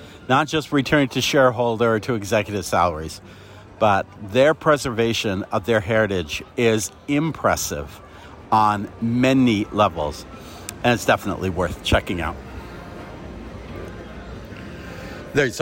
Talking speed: 105 wpm